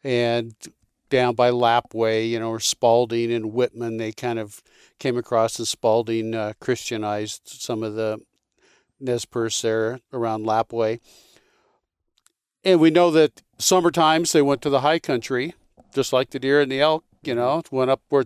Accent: American